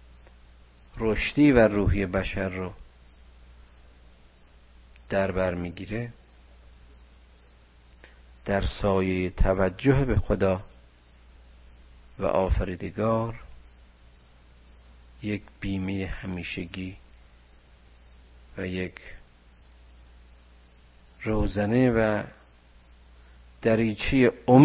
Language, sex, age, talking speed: Persian, male, 50-69, 55 wpm